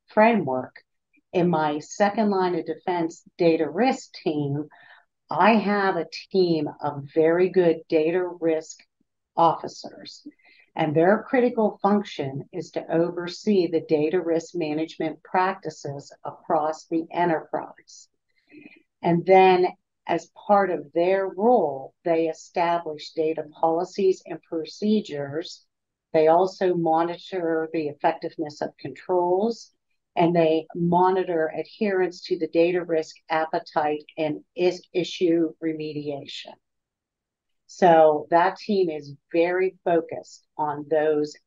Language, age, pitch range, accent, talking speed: English, 50-69, 155-185 Hz, American, 110 wpm